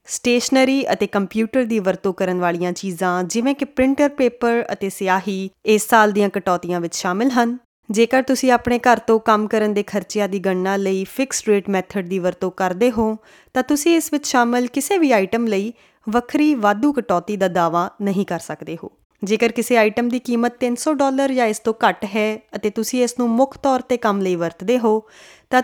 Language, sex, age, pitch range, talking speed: Punjabi, female, 20-39, 190-245 Hz, 170 wpm